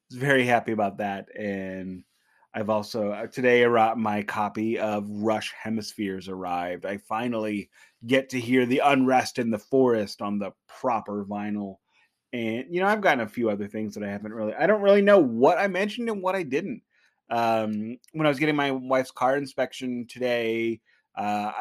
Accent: American